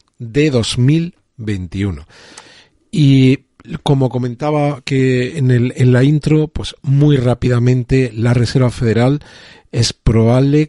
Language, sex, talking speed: Spanish, male, 105 wpm